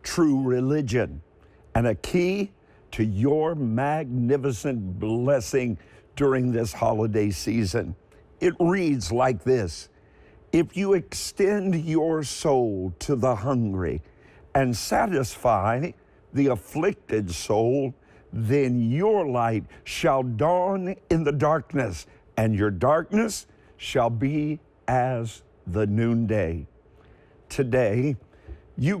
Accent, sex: American, male